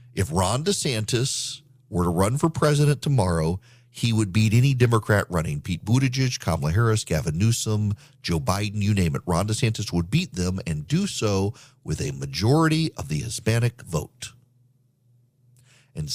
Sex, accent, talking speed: male, American, 155 wpm